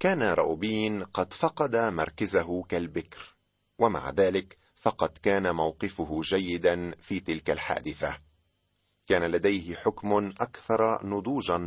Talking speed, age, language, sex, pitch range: 105 wpm, 40-59, Arabic, male, 85-110 Hz